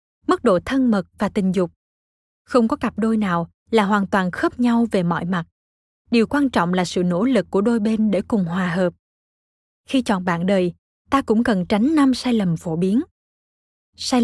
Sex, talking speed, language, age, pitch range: female, 200 wpm, Vietnamese, 20-39, 185-245 Hz